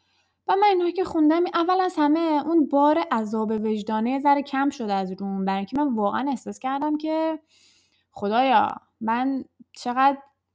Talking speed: 150 wpm